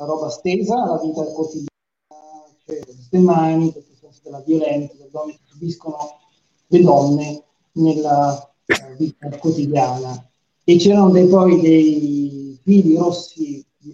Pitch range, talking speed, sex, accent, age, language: 140-170 Hz, 110 wpm, male, native, 40-59, Italian